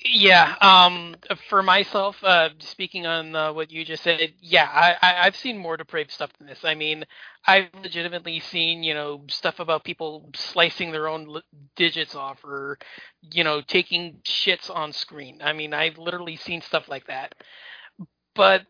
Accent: American